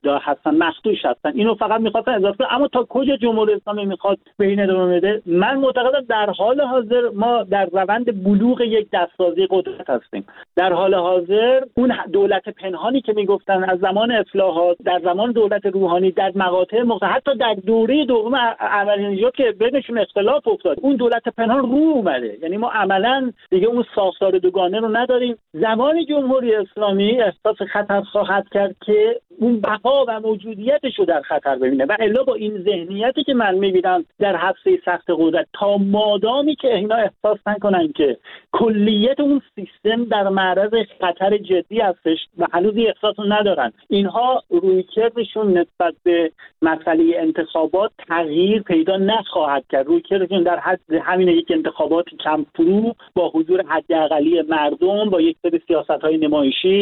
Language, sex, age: Persian, male, 50-69